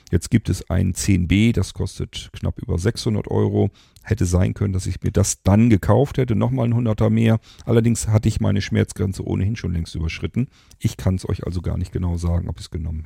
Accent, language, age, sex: German, German, 40-59, male